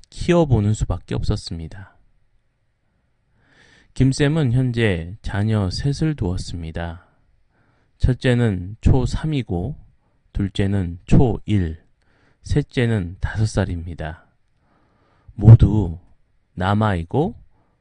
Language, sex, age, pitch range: Korean, male, 30-49, 95-125 Hz